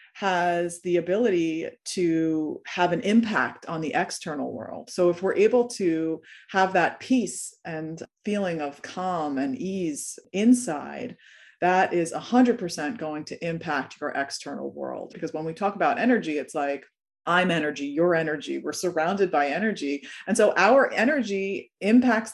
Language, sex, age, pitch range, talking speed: English, female, 30-49, 165-230 Hz, 150 wpm